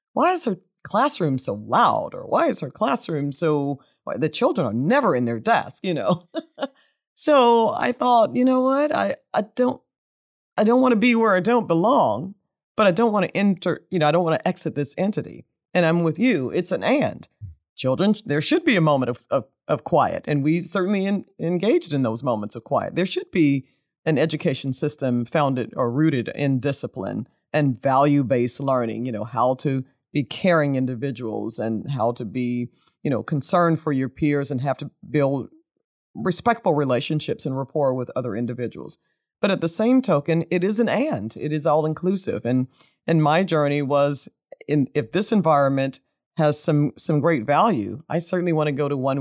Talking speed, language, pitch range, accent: 195 wpm, English, 130-185 Hz, American